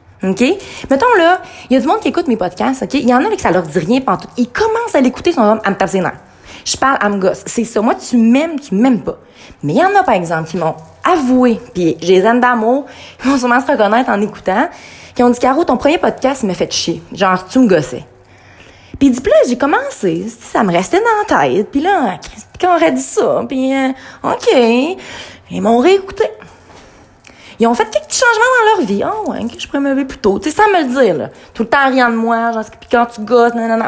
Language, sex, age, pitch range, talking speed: French, female, 30-49, 215-330 Hz, 255 wpm